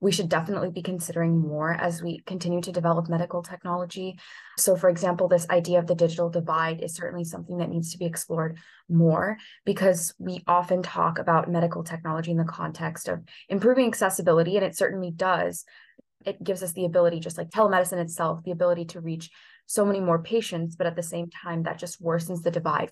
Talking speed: 195 wpm